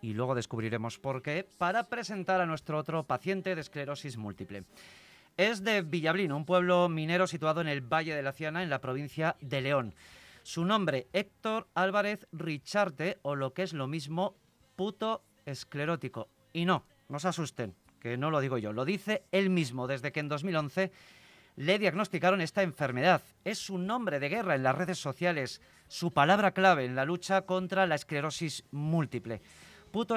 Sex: male